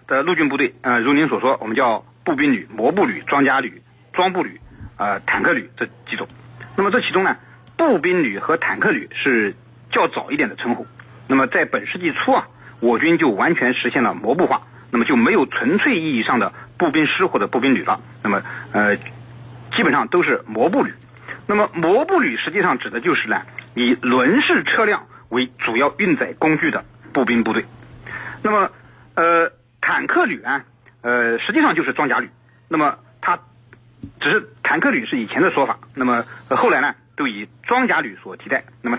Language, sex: Chinese, male